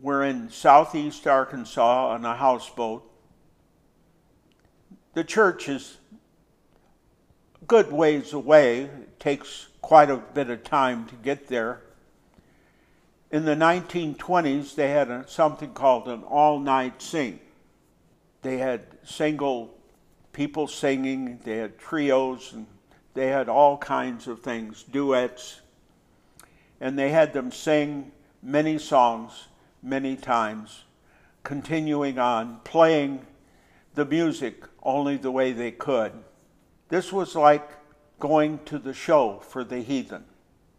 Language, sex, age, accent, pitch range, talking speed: English, male, 60-79, American, 125-150 Hz, 115 wpm